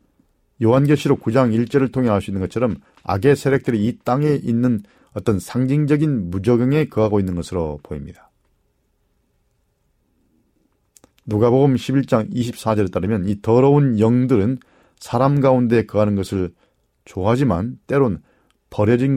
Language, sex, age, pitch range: Korean, male, 40-59, 100-130 Hz